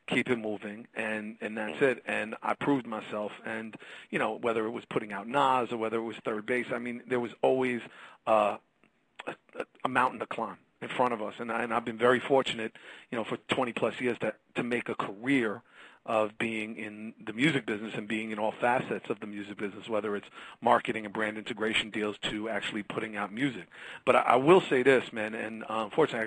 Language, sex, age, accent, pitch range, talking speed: English, male, 40-59, American, 110-125 Hz, 215 wpm